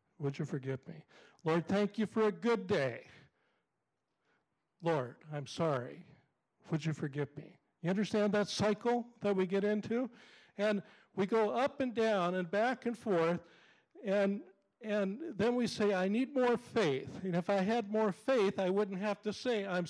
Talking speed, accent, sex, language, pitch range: 170 wpm, American, male, English, 160-220 Hz